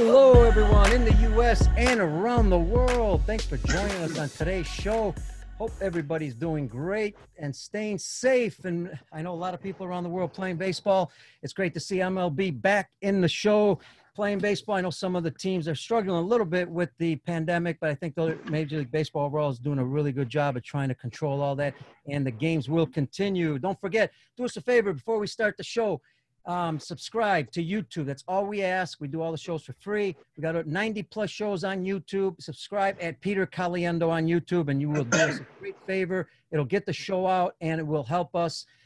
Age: 50-69